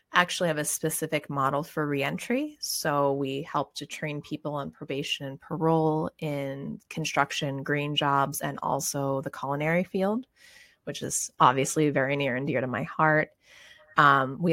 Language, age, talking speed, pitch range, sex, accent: English, 30-49, 155 wpm, 140-170 Hz, female, American